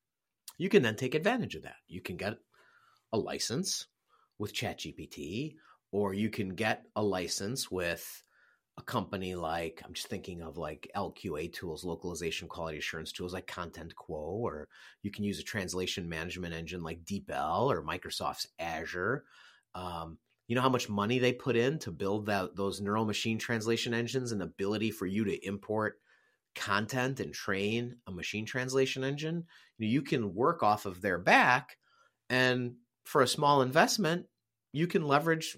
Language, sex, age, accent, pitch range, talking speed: English, male, 30-49, American, 95-125 Hz, 165 wpm